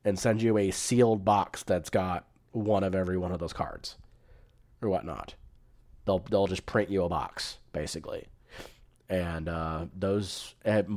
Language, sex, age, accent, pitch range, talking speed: English, male, 30-49, American, 90-110 Hz, 160 wpm